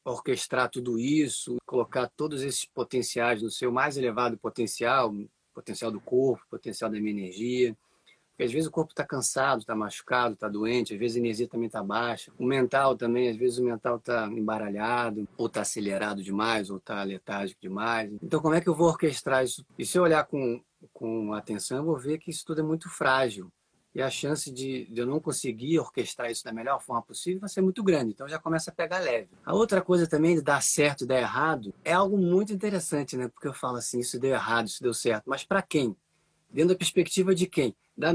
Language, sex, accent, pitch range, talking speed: Portuguese, male, Brazilian, 115-160 Hz, 210 wpm